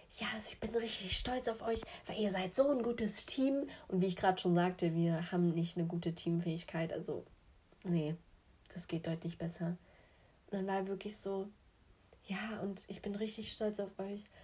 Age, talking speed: 30-49, 190 wpm